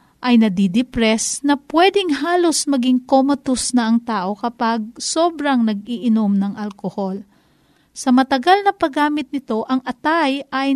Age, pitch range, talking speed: 50-69, 230-305 Hz, 130 wpm